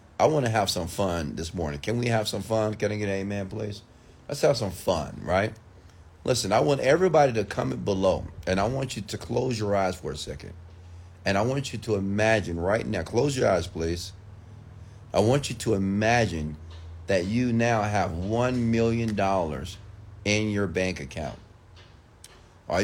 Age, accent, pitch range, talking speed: 40-59, American, 90-115 Hz, 185 wpm